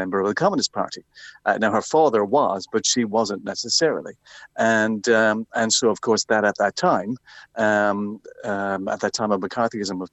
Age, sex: 40-59, male